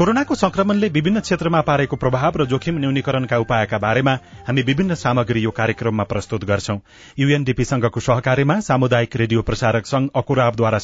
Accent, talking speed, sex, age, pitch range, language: Indian, 120 wpm, male, 30-49, 115-150 Hz, English